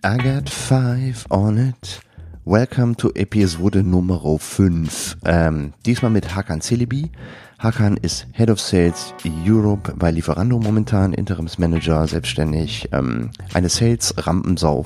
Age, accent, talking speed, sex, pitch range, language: 40-59, German, 115 wpm, male, 85-110 Hz, German